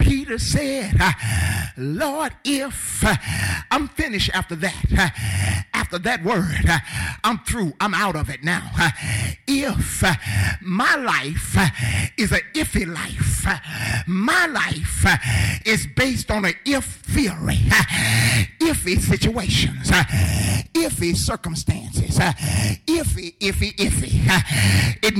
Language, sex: English, male